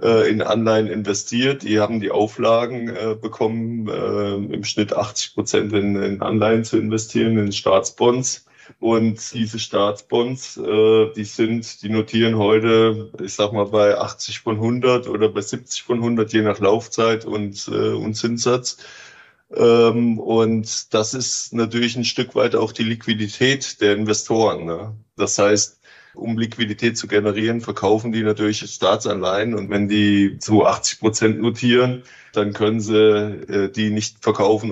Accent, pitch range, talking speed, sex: German, 105-115 Hz, 150 wpm, male